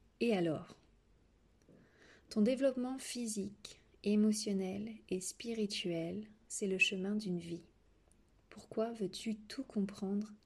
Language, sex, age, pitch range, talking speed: French, female, 30-49, 185-220 Hz, 100 wpm